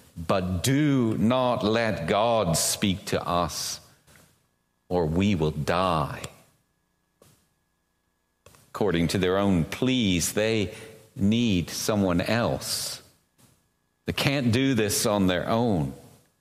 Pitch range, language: 90-125 Hz, English